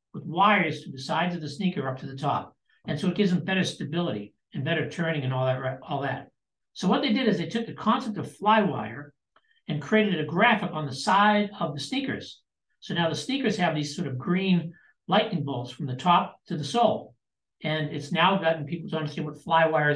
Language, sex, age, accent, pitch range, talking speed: English, male, 60-79, American, 150-195 Hz, 225 wpm